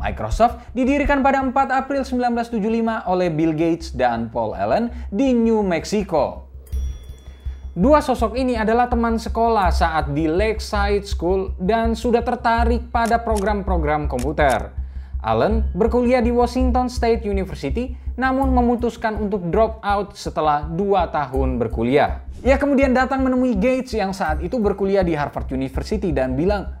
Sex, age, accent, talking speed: male, 20-39, native, 135 wpm